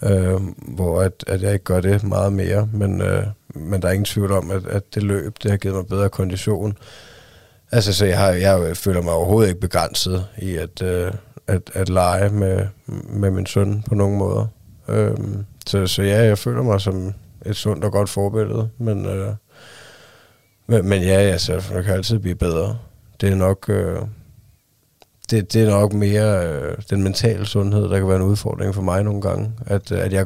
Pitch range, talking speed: 95-105 Hz, 200 wpm